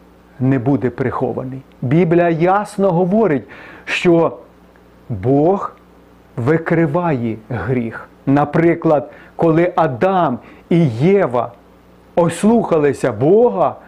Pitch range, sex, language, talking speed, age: 125-185 Hz, male, Ukrainian, 75 wpm, 40-59